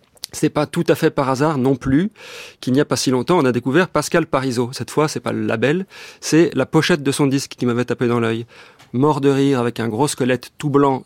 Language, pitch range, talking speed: French, 125-155 Hz, 250 wpm